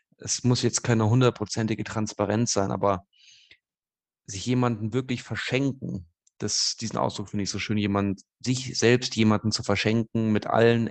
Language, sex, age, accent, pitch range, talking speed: German, male, 30-49, German, 100-120 Hz, 150 wpm